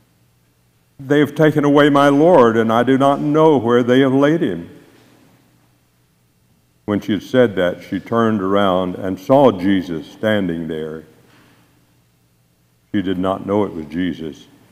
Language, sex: English, male